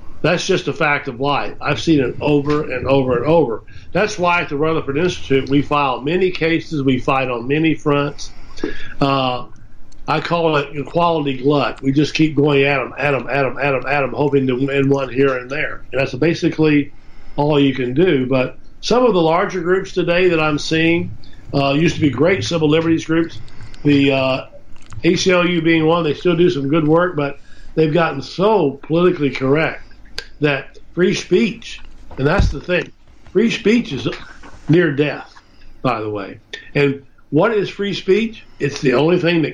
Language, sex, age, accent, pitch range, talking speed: English, male, 50-69, American, 135-170 Hz, 185 wpm